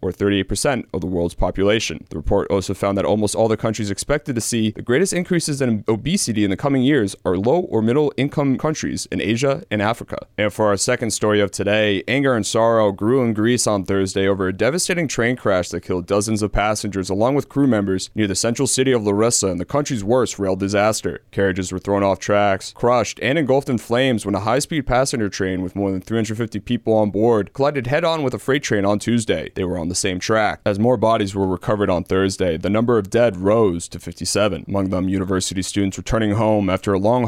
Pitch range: 95-115 Hz